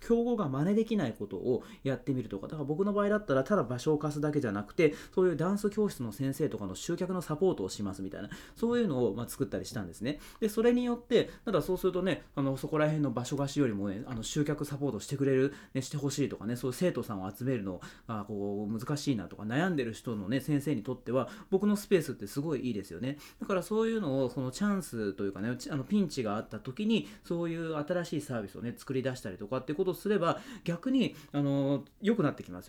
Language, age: Japanese, 30-49